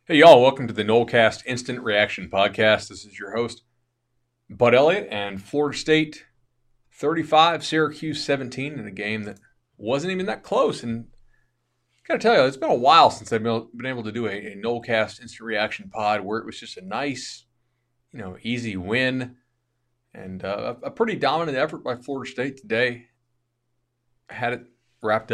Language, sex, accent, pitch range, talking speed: English, male, American, 105-125 Hz, 175 wpm